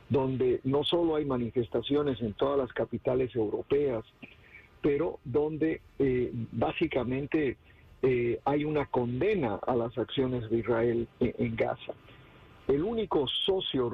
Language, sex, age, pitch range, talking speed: English, male, 50-69, 120-150 Hz, 120 wpm